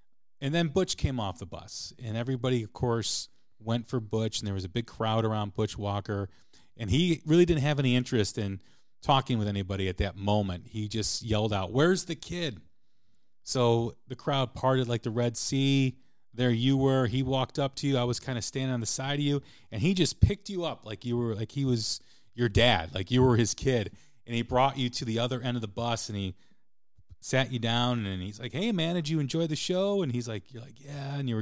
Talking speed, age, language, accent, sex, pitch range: 240 wpm, 30-49, English, American, male, 105-135 Hz